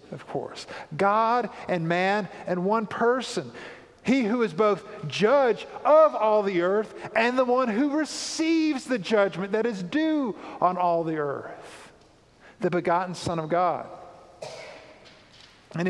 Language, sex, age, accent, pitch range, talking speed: English, male, 50-69, American, 185-260 Hz, 140 wpm